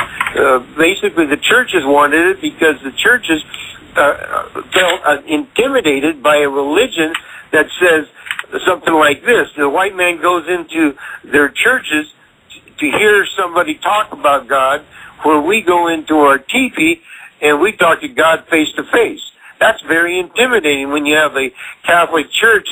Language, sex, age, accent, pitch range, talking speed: English, male, 60-79, American, 145-170 Hz, 150 wpm